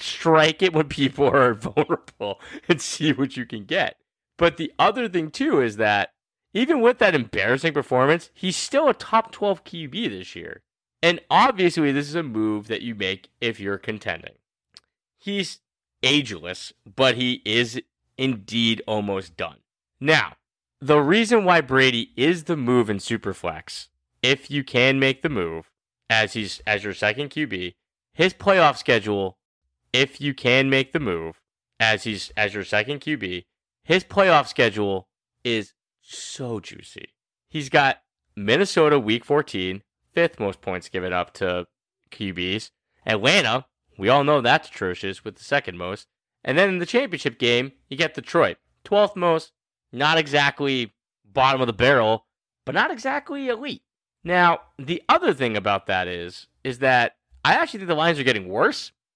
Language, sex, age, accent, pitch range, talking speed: English, male, 30-49, American, 105-165 Hz, 155 wpm